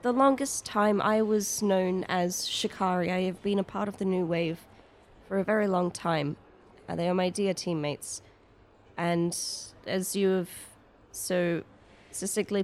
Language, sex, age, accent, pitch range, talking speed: English, female, 20-39, Australian, 165-195 Hz, 155 wpm